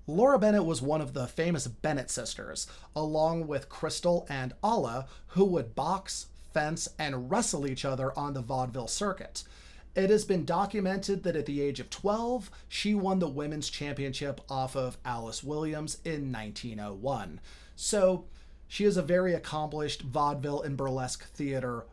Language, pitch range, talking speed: English, 135-170 Hz, 155 wpm